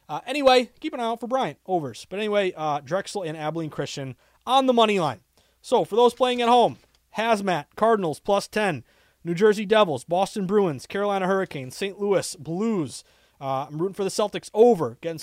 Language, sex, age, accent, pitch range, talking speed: English, male, 30-49, American, 145-205 Hz, 190 wpm